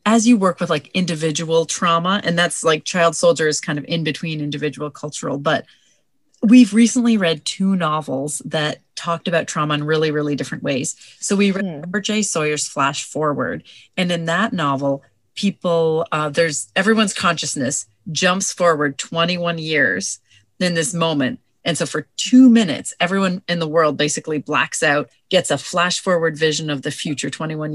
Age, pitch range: 30-49, 150-190 Hz